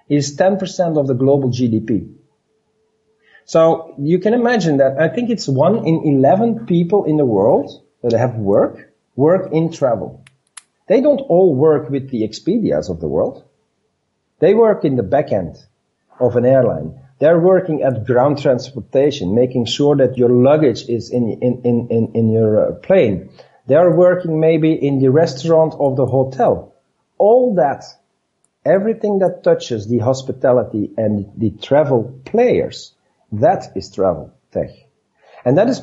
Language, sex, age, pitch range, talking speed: English, male, 50-69, 120-165 Hz, 150 wpm